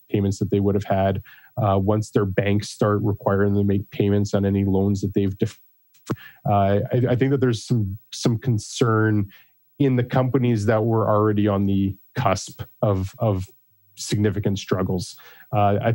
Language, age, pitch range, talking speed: English, 20-39, 100-125 Hz, 175 wpm